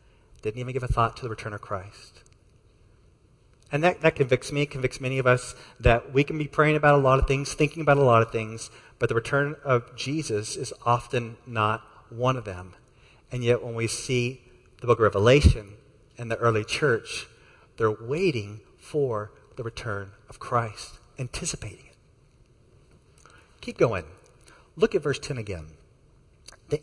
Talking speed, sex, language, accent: 170 wpm, male, English, American